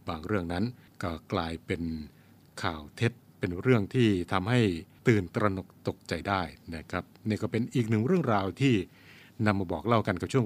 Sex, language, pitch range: male, Thai, 90-115 Hz